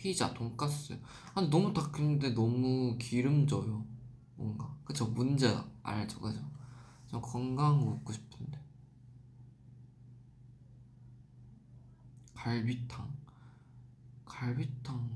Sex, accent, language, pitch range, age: male, native, Korean, 125-140 Hz, 20-39